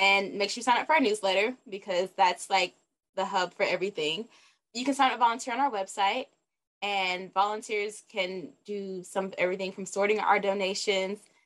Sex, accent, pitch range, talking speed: female, American, 195-255 Hz, 185 wpm